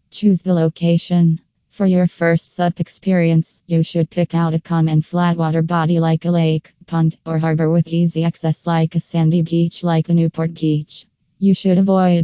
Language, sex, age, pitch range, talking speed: English, female, 20-39, 165-180 Hz, 180 wpm